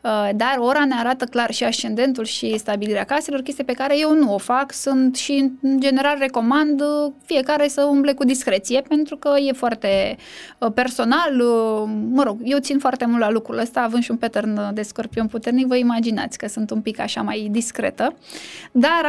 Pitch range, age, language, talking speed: 230-290 Hz, 10-29, Romanian, 180 wpm